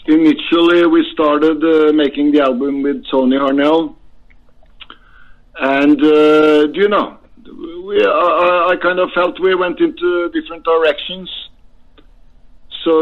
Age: 50-69